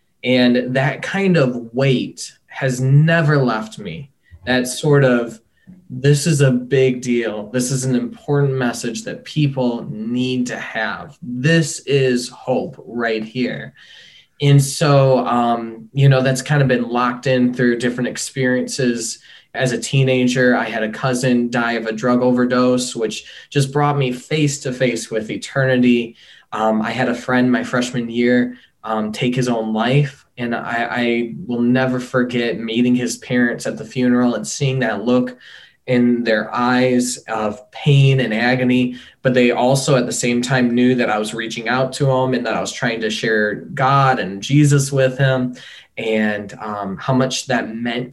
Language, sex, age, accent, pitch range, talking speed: English, male, 20-39, American, 120-135 Hz, 170 wpm